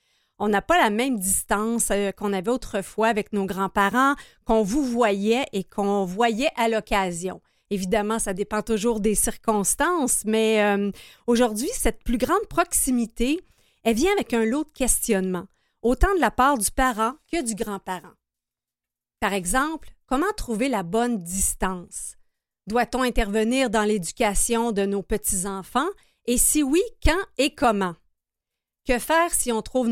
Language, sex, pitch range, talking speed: French, female, 205-255 Hz, 150 wpm